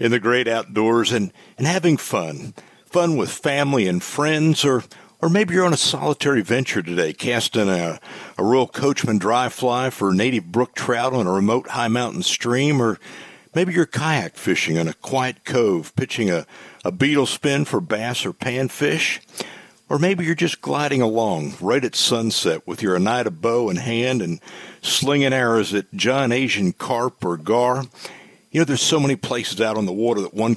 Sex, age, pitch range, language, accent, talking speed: male, 50-69, 115-145 Hz, English, American, 185 wpm